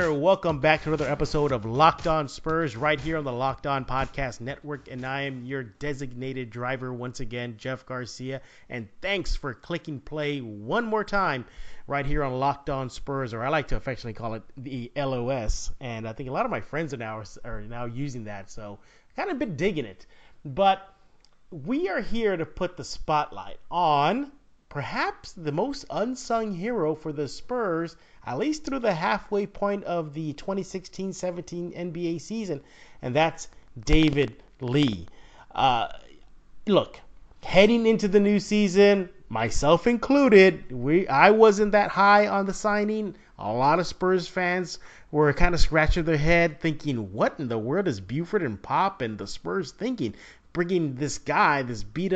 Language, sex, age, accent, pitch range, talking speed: English, male, 30-49, American, 130-190 Hz, 170 wpm